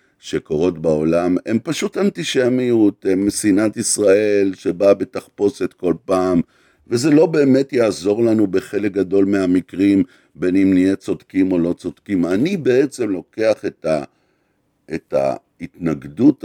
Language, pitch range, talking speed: Hebrew, 85-110 Hz, 125 wpm